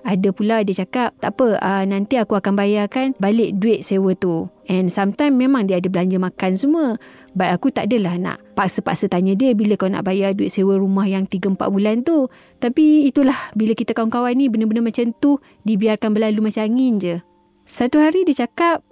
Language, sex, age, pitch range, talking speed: Malay, female, 20-39, 190-235 Hz, 190 wpm